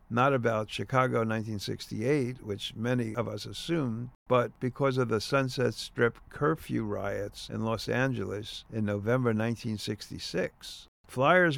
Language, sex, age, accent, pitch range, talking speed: English, male, 50-69, American, 105-135 Hz, 125 wpm